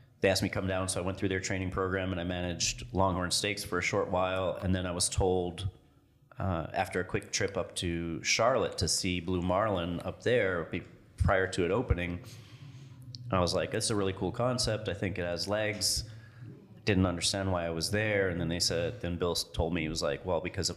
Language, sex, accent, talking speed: English, male, American, 220 wpm